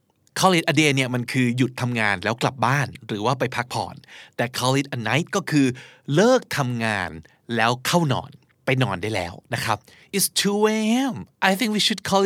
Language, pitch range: Thai, 120-160 Hz